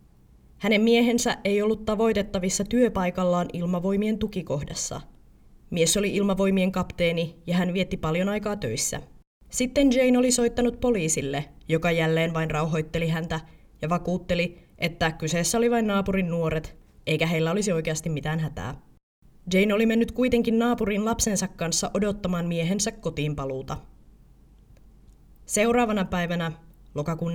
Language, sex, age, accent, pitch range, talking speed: Finnish, female, 20-39, native, 160-220 Hz, 120 wpm